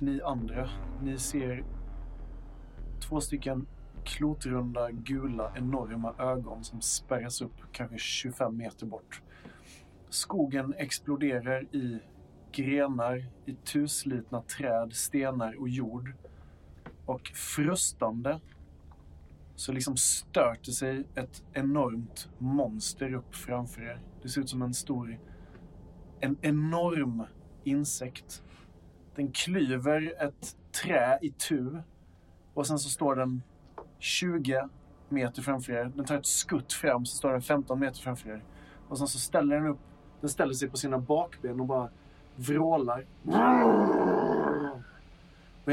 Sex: male